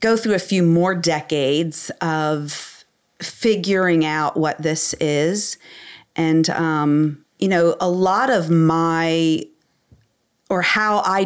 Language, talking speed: English, 125 wpm